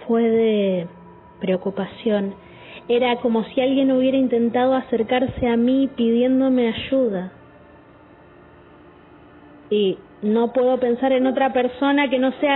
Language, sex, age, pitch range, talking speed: Spanish, female, 20-39, 210-275 Hz, 115 wpm